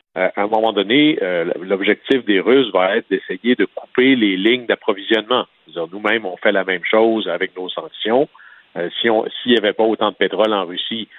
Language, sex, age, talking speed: French, male, 50-69, 210 wpm